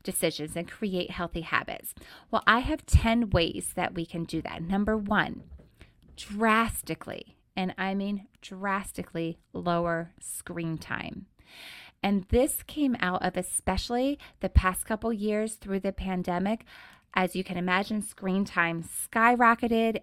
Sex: female